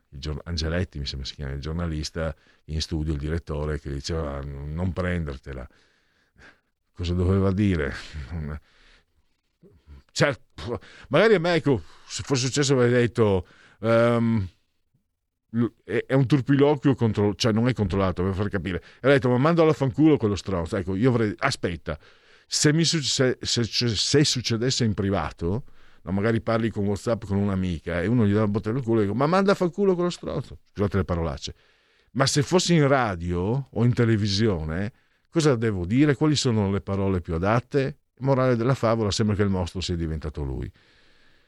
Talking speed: 170 wpm